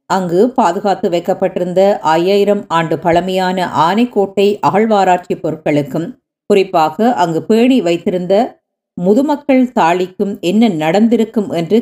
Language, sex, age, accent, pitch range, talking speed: Tamil, female, 50-69, native, 175-220 Hz, 90 wpm